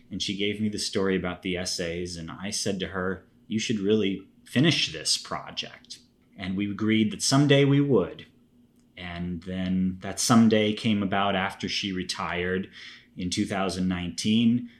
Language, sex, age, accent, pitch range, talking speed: English, male, 30-49, American, 95-115 Hz, 155 wpm